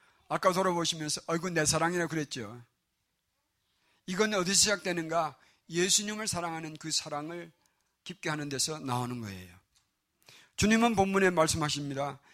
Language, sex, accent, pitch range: Korean, male, native, 150-215 Hz